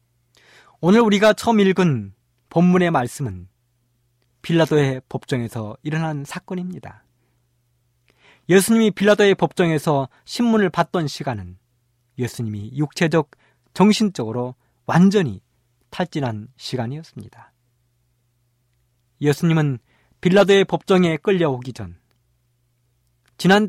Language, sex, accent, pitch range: Korean, male, native, 120-180 Hz